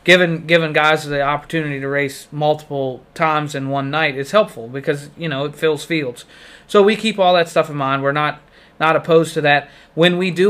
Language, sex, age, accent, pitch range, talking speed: English, male, 30-49, American, 145-175 Hz, 210 wpm